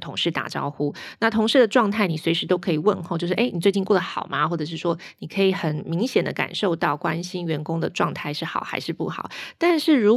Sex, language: female, Chinese